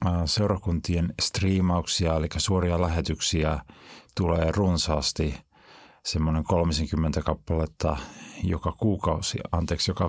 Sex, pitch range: male, 80-90 Hz